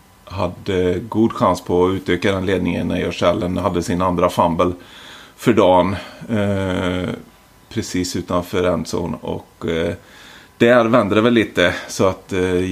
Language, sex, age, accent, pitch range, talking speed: Swedish, male, 30-49, native, 90-110 Hz, 140 wpm